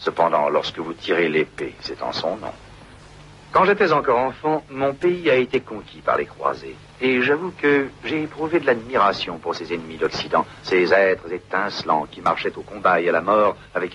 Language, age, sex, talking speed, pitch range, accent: French, 60-79, male, 190 wpm, 75-115 Hz, French